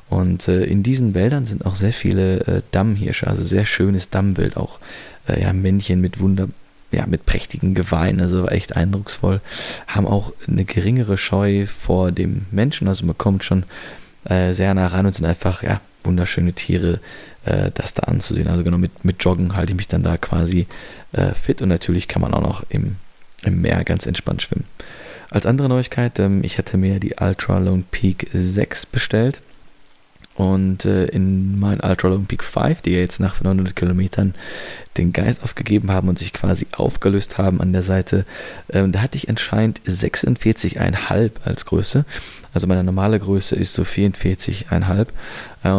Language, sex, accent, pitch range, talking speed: German, male, German, 90-105 Hz, 170 wpm